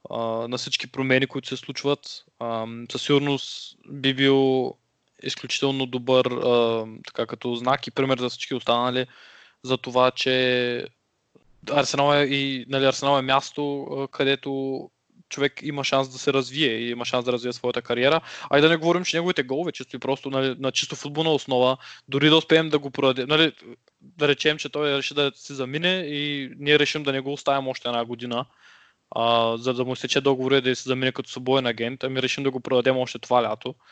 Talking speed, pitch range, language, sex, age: 190 wpm, 125-145 Hz, Bulgarian, male, 20-39